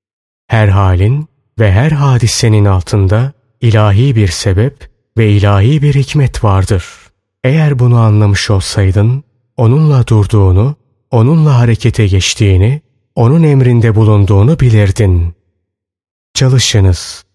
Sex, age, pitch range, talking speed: male, 30-49, 100-130 Hz, 95 wpm